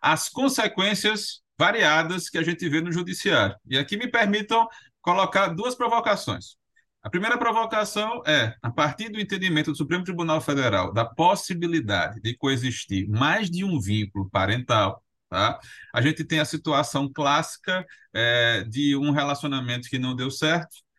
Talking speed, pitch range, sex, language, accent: 145 wpm, 115-165 Hz, male, Portuguese, Brazilian